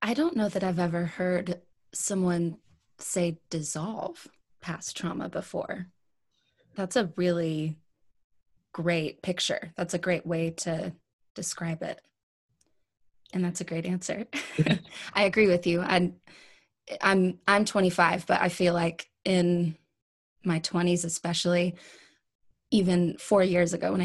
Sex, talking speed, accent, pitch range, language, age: female, 125 wpm, American, 165-190 Hz, English, 20-39